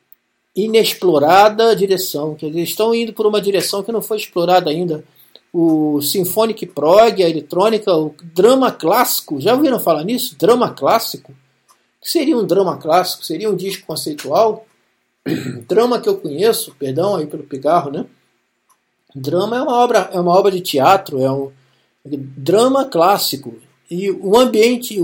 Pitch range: 155-210 Hz